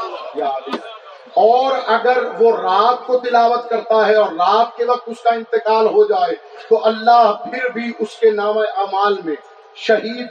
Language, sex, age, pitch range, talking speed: Urdu, male, 50-69, 215-245 Hz, 155 wpm